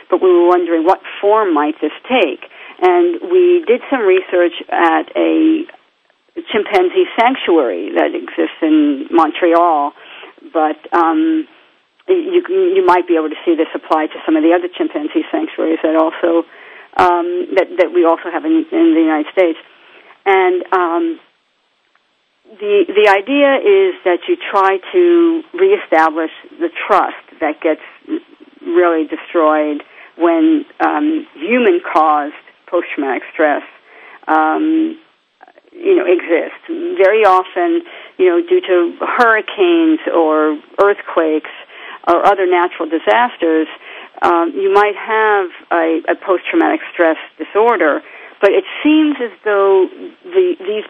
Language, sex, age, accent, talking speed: English, female, 50-69, American, 125 wpm